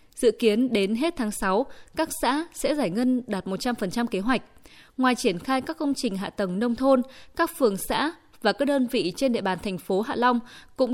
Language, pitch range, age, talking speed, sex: Vietnamese, 205-265 Hz, 20-39, 220 wpm, female